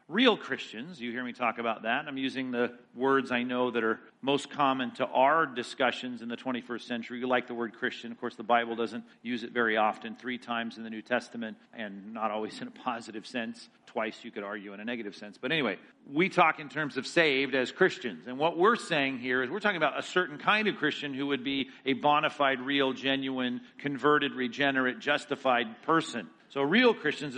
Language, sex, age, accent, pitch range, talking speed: English, male, 50-69, American, 125-165 Hz, 215 wpm